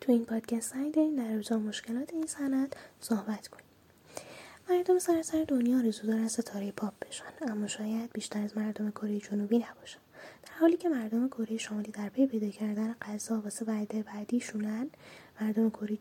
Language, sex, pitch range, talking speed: Persian, female, 215-255 Hz, 155 wpm